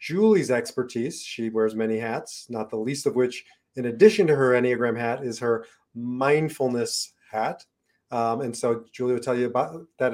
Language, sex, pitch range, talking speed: English, male, 115-140 Hz, 180 wpm